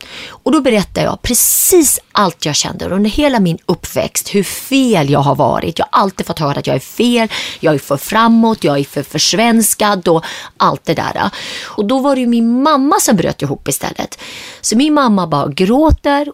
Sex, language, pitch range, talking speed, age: female, English, 190-285 Hz, 200 wpm, 30-49